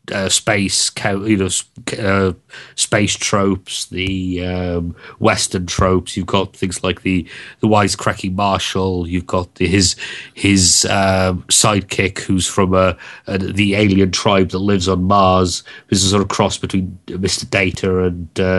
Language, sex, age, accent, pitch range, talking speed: English, male, 30-49, British, 95-105 Hz, 150 wpm